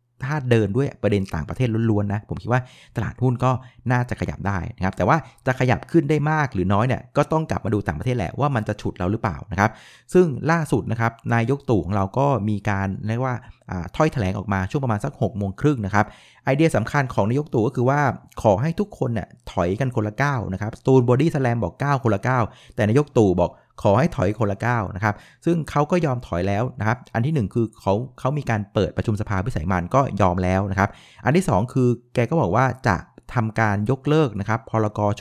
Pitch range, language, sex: 100-130 Hz, Thai, male